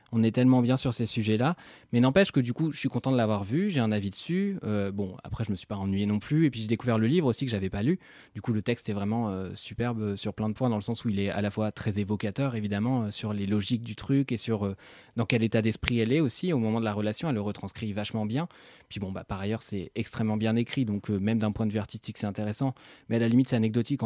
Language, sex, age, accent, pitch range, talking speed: French, male, 20-39, French, 105-125 Hz, 290 wpm